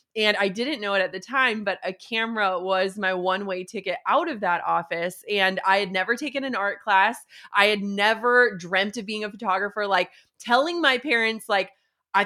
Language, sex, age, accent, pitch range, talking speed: English, female, 20-39, American, 190-235 Hz, 200 wpm